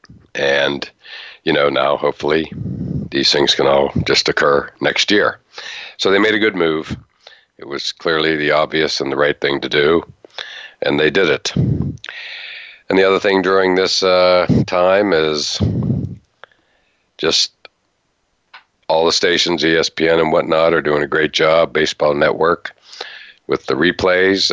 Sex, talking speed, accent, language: male, 145 wpm, American, English